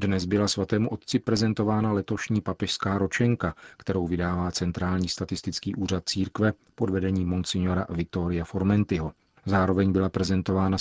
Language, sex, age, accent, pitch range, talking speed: Czech, male, 40-59, native, 90-100 Hz, 120 wpm